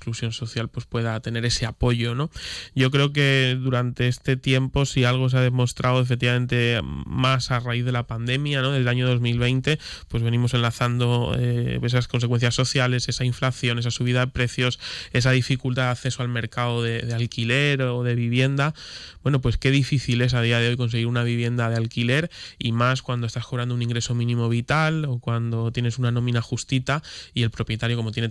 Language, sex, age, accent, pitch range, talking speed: Spanish, male, 20-39, Spanish, 115-130 Hz, 190 wpm